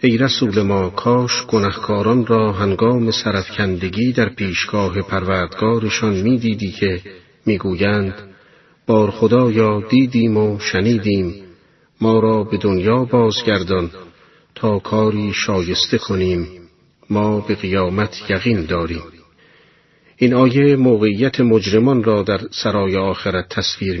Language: Persian